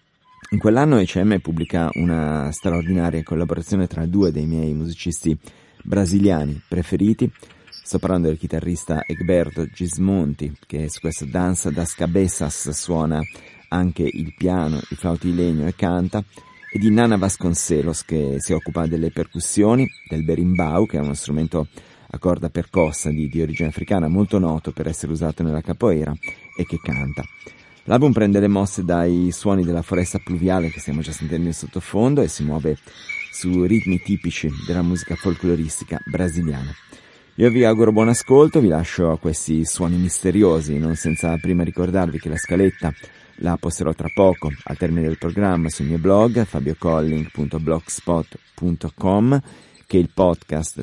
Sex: male